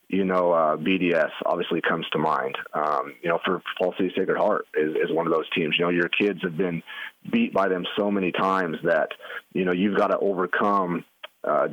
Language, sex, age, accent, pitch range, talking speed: English, male, 30-49, American, 90-105 Hz, 215 wpm